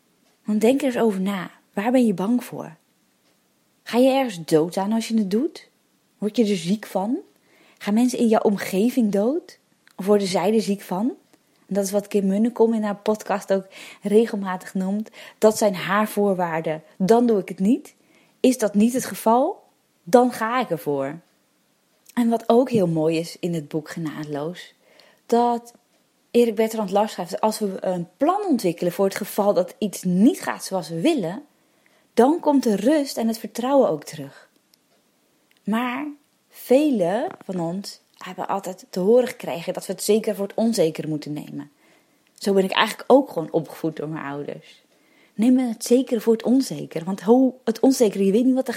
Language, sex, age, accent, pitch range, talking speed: Dutch, female, 20-39, Dutch, 190-245 Hz, 180 wpm